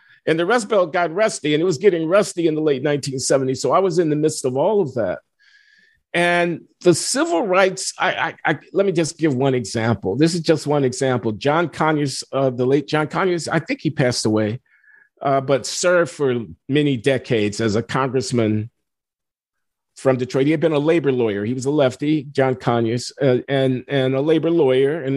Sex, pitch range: male, 130-165 Hz